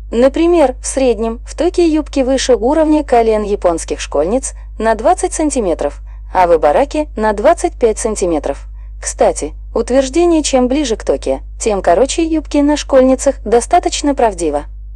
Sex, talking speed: female, 130 wpm